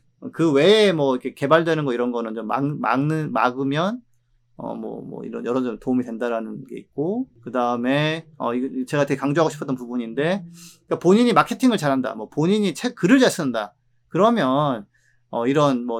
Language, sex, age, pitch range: Korean, male, 30-49, 120-170 Hz